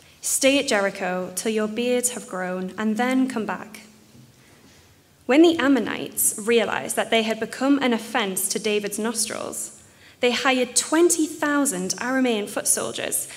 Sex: female